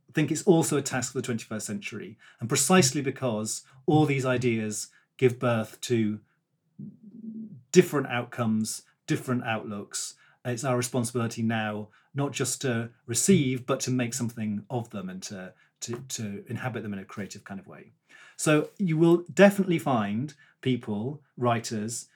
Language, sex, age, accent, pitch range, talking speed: English, male, 40-59, British, 110-145 Hz, 150 wpm